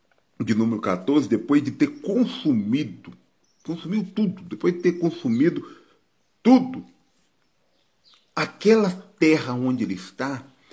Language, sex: Portuguese, male